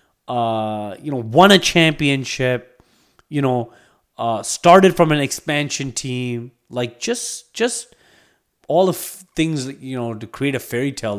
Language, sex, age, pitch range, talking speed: English, male, 30-49, 110-160 Hz, 150 wpm